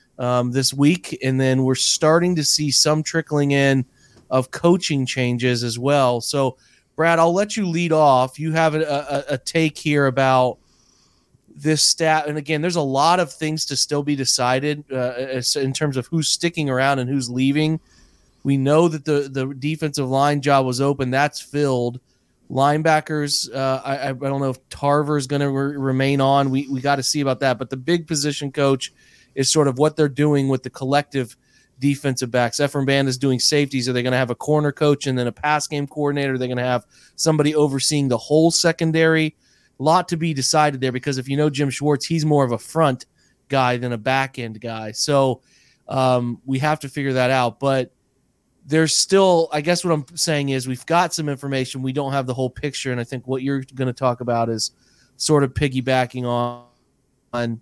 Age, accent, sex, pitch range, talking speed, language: 30-49, American, male, 130-150 Hz, 205 wpm, English